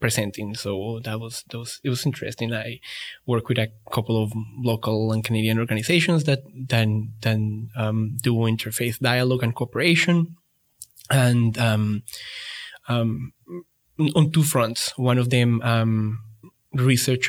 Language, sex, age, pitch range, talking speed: English, male, 20-39, 110-130 Hz, 130 wpm